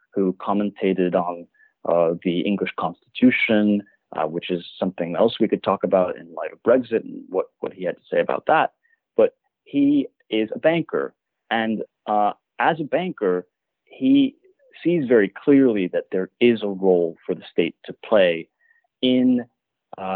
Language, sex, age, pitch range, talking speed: English, male, 30-49, 90-120 Hz, 165 wpm